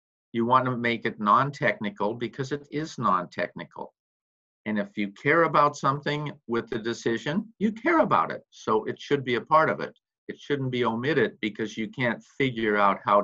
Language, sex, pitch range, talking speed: English, male, 105-135 Hz, 180 wpm